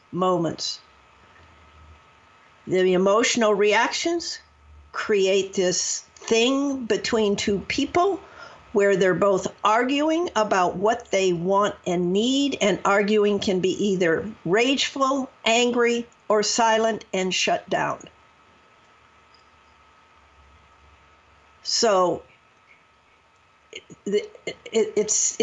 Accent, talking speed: American, 80 wpm